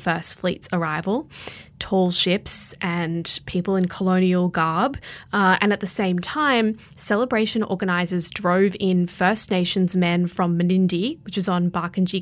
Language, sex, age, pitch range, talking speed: English, female, 20-39, 175-200 Hz, 145 wpm